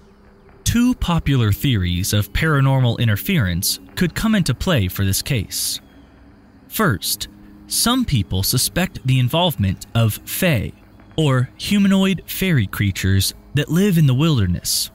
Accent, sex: American, male